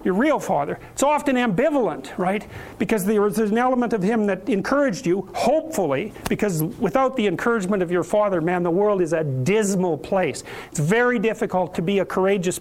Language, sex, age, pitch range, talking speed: English, male, 50-69, 180-220 Hz, 180 wpm